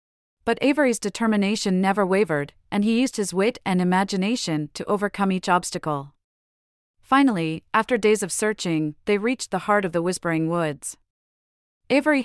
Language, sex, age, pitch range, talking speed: English, female, 40-59, 165-215 Hz, 145 wpm